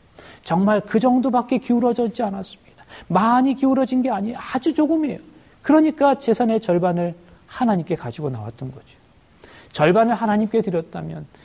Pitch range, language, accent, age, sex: 155-235 Hz, Korean, native, 40-59, male